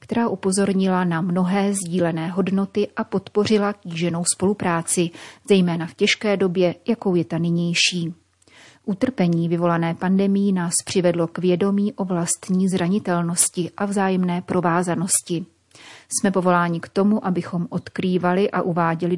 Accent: native